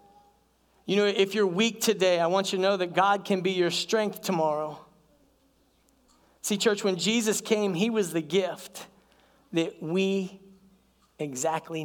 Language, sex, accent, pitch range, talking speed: English, male, American, 150-190 Hz, 150 wpm